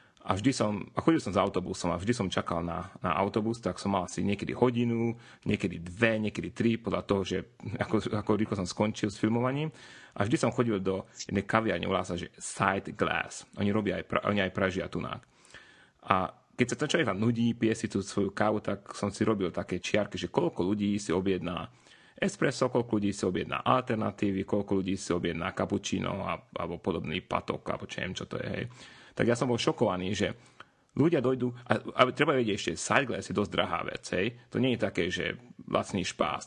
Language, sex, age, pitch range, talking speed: Slovak, male, 30-49, 95-115 Hz, 190 wpm